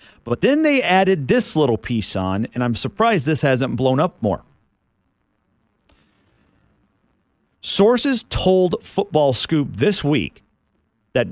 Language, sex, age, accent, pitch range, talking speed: English, male, 40-59, American, 125-180 Hz, 120 wpm